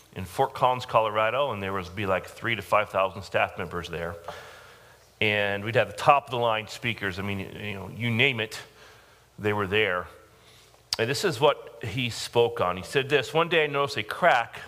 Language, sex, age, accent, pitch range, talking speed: English, male, 40-59, American, 100-165 Hz, 205 wpm